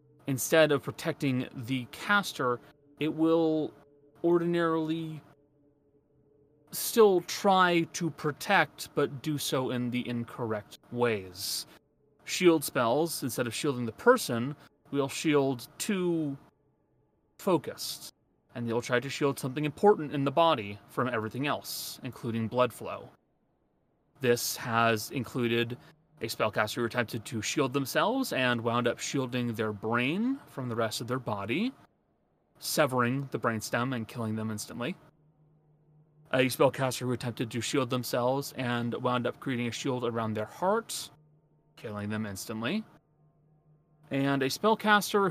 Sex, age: male, 30-49